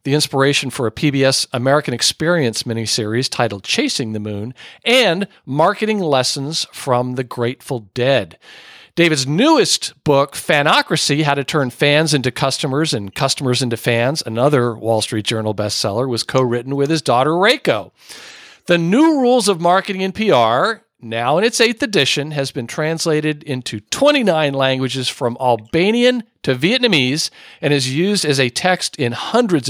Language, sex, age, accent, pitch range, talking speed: English, male, 50-69, American, 125-180 Hz, 150 wpm